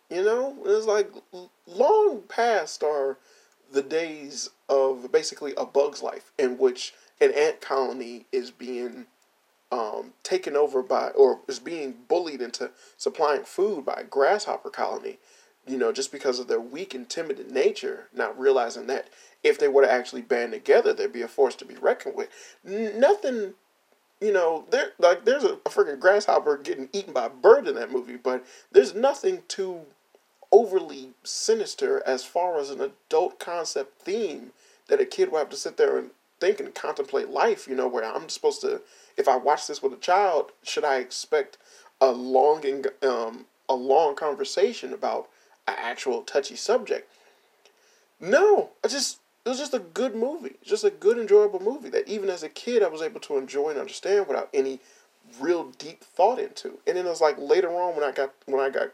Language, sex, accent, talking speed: English, male, American, 185 wpm